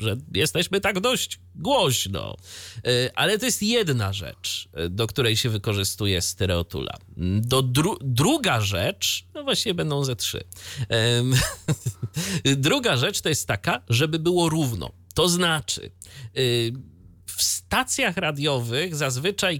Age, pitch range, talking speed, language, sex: 30-49, 110-170 Hz, 115 wpm, Polish, male